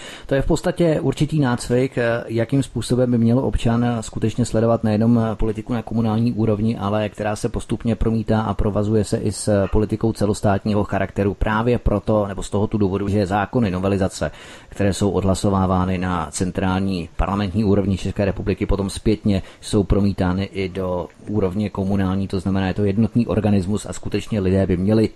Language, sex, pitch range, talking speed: Czech, male, 95-110 Hz, 165 wpm